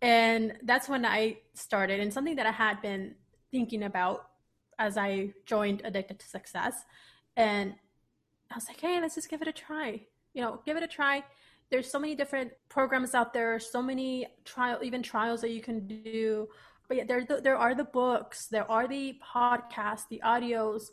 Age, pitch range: 20-39, 210-250 Hz